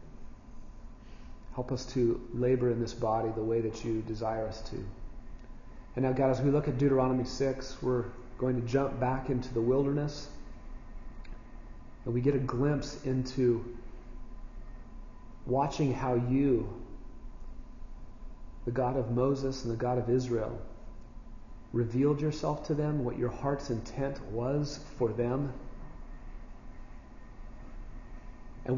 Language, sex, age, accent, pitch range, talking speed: English, male, 40-59, American, 120-135 Hz, 125 wpm